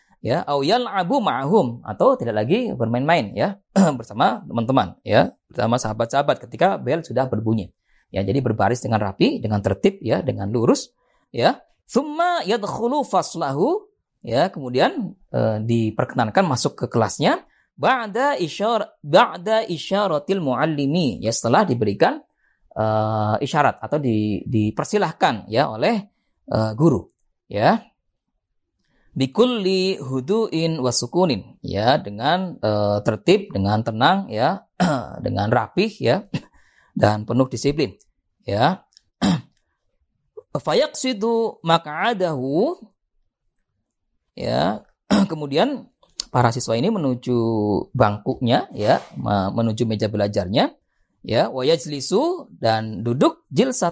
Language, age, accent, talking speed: Indonesian, 20-39, native, 105 wpm